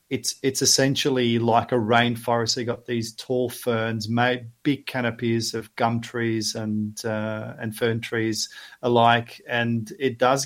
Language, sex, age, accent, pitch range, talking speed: English, male, 40-59, Australian, 115-135 Hz, 150 wpm